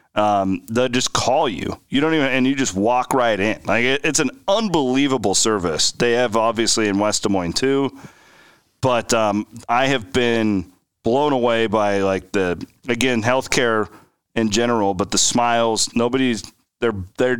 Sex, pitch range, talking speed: male, 100-125 Hz, 165 wpm